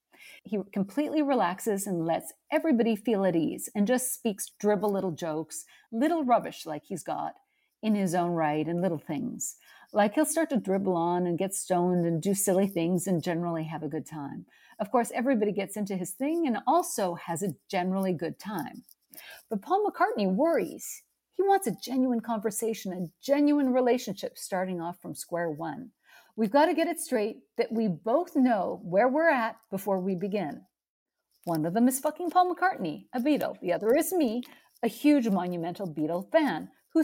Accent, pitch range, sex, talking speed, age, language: American, 185-260 Hz, female, 180 wpm, 50-69, English